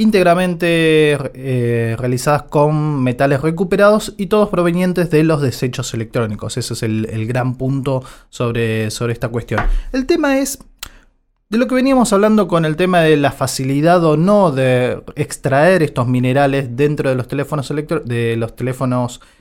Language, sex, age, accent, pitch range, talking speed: Spanish, male, 20-39, Argentinian, 130-210 Hz, 160 wpm